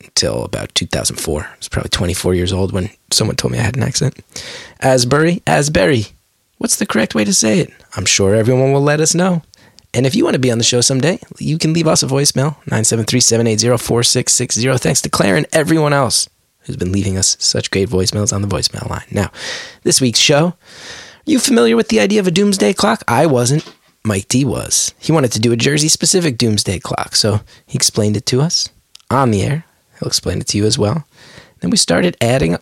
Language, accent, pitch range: English, American, 105-145 Hz